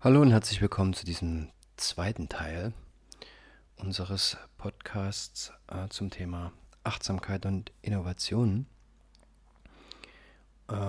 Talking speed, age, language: 95 wpm, 40-59, German